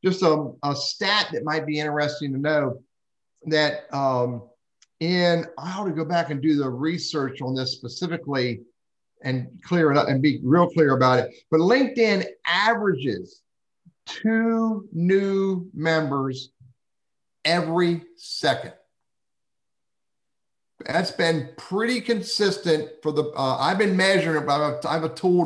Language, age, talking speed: English, 50-69, 140 wpm